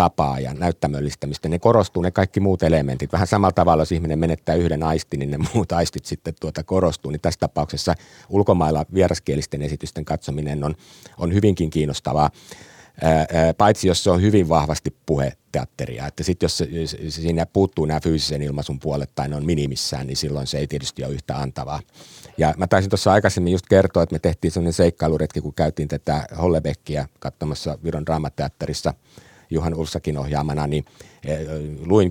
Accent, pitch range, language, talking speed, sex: native, 75-90 Hz, Finnish, 165 wpm, male